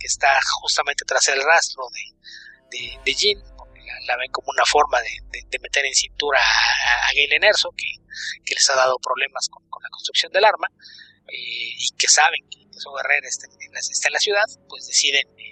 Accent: Mexican